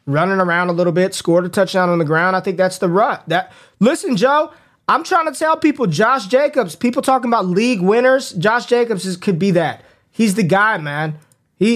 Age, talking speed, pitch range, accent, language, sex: 20-39, 215 wpm, 170-210 Hz, American, English, male